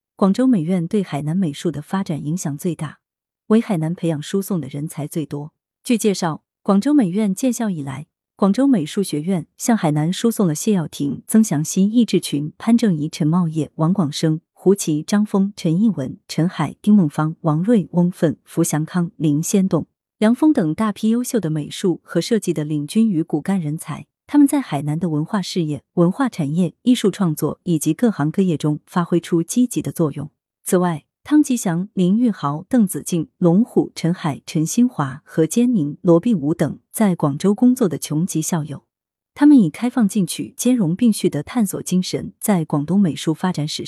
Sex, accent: female, native